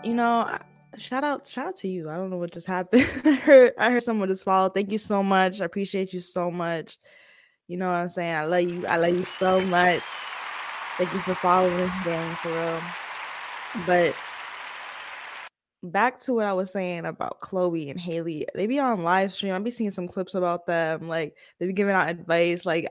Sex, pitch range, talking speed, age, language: female, 170-205 Hz, 210 wpm, 10-29, English